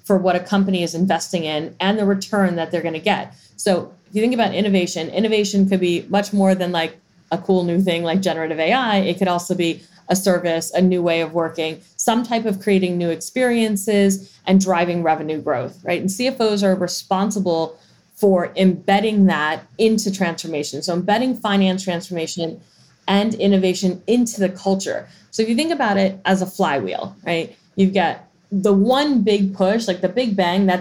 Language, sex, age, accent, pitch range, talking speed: English, female, 30-49, American, 175-200 Hz, 185 wpm